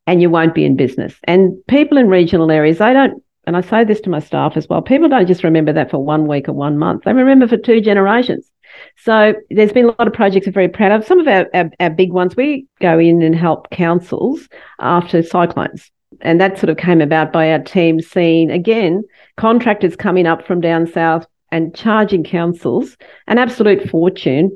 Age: 50-69